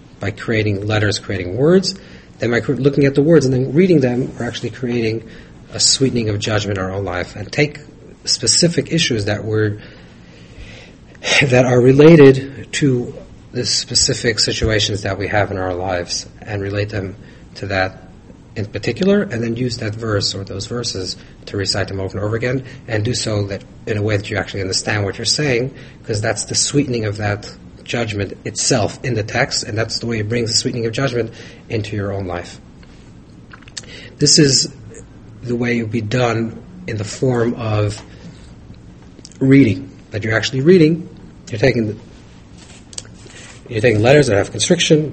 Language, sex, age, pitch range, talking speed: English, male, 40-59, 100-130 Hz, 175 wpm